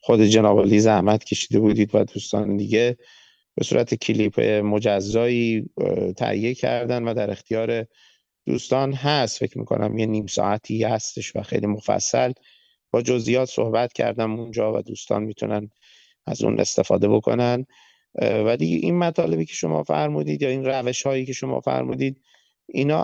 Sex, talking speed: male, 140 wpm